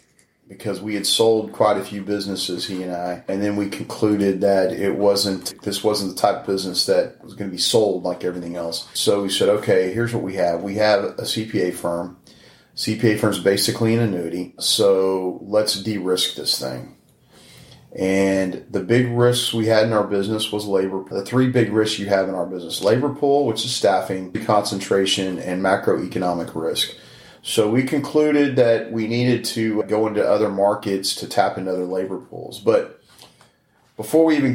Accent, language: American, English